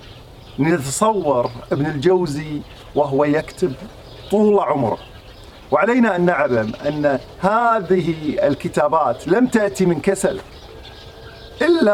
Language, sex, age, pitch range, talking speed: Arabic, male, 50-69, 160-220 Hz, 90 wpm